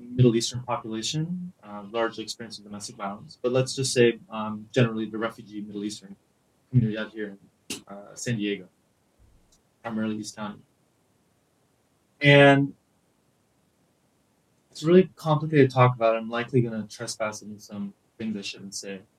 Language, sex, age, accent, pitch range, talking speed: English, male, 20-39, American, 110-130 Hz, 145 wpm